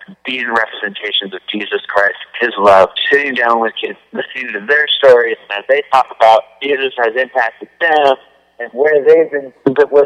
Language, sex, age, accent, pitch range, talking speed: English, male, 40-59, American, 125-170 Hz, 175 wpm